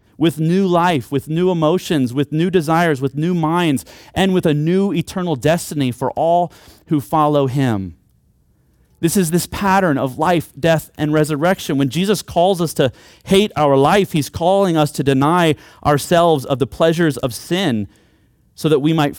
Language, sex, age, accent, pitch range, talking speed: English, male, 30-49, American, 115-165 Hz, 170 wpm